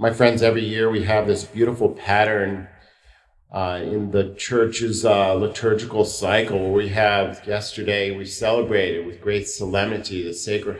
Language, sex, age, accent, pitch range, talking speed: English, male, 40-59, American, 100-125 Hz, 145 wpm